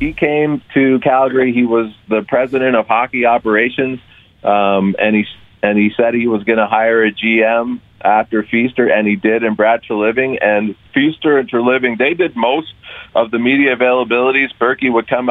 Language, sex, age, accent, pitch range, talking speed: English, male, 40-59, American, 110-130 Hz, 190 wpm